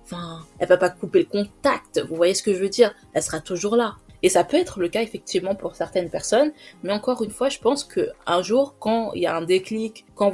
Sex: female